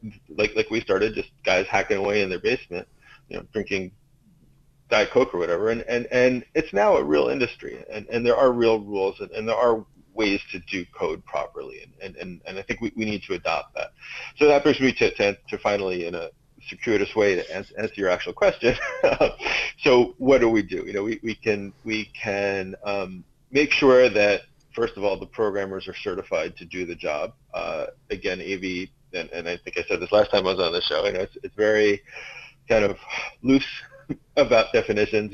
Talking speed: 210 wpm